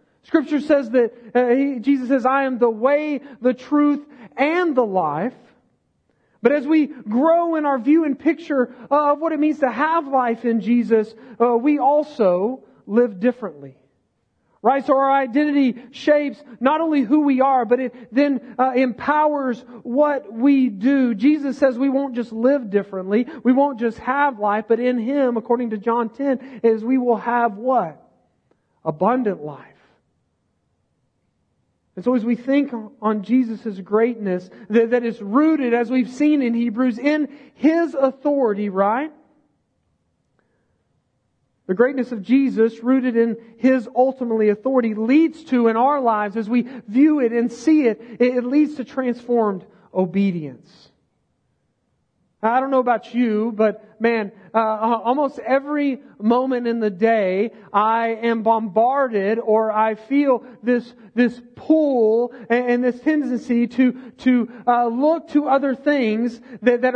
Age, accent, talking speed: 40-59, American, 150 wpm